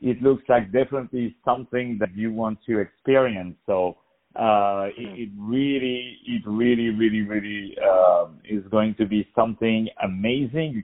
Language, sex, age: English, male, 50-69